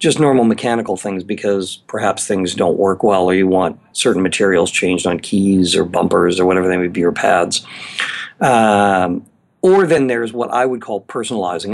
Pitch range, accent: 100-135 Hz, American